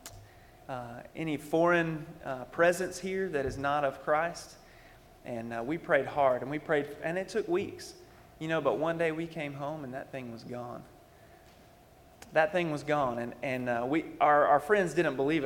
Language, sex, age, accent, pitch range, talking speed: English, male, 30-49, American, 130-160 Hz, 190 wpm